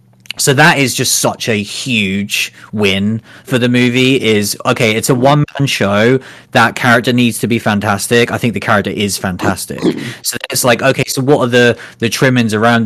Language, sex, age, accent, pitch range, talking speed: English, male, 30-49, British, 105-140 Hz, 190 wpm